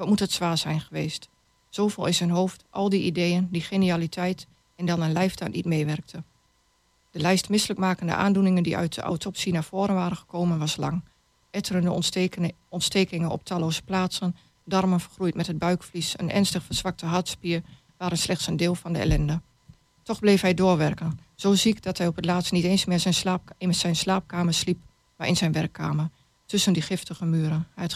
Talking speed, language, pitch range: 180 wpm, Dutch, 165-185 Hz